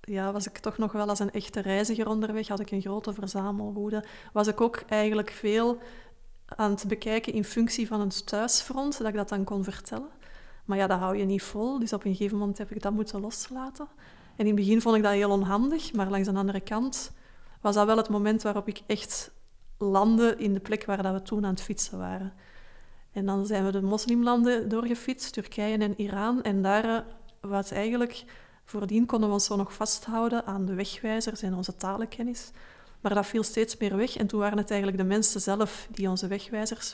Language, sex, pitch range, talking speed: Dutch, female, 200-225 Hz, 210 wpm